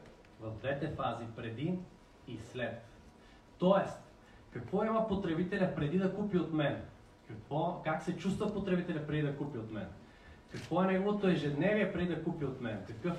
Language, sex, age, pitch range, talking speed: Bulgarian, male, 30-49, 130-175 Hz, 160 wpm